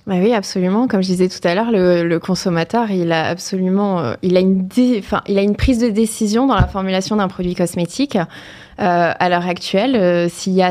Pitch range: 175-215 Hz